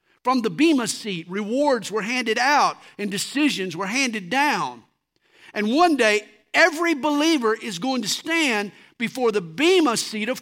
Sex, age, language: male, 50-69, English